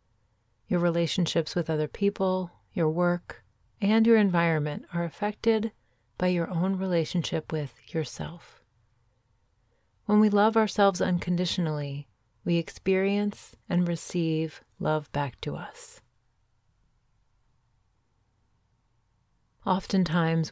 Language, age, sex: English, 30-49, female